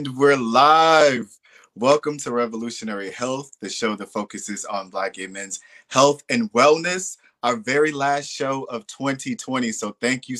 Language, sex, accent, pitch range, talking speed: English, male, American, 110-140 Hz, 150 wpm